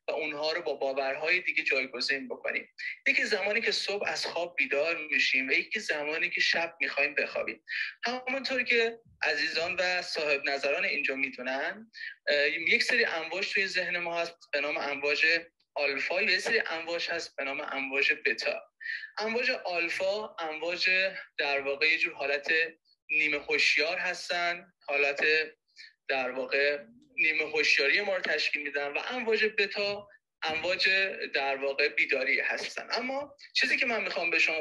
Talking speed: 145 wpm